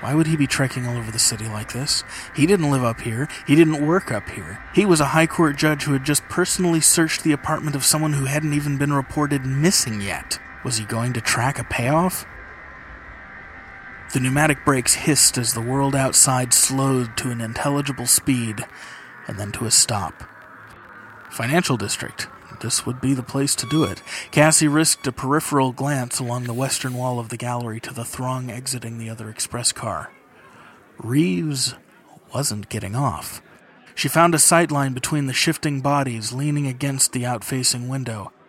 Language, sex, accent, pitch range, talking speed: English, male, American, 120-150 Hz, 180 wpm